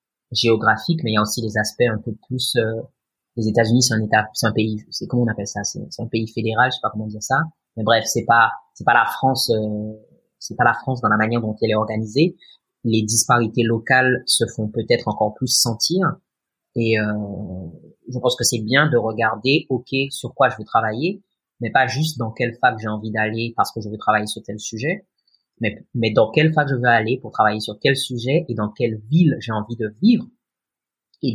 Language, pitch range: French, 110-140 Hz